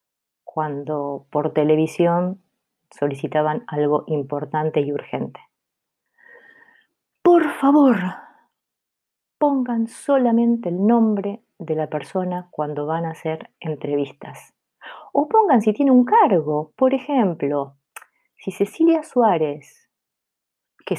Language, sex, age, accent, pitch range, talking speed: Spanish, female, 30-49, Argentinian, 160-270 Hz, 95 wpm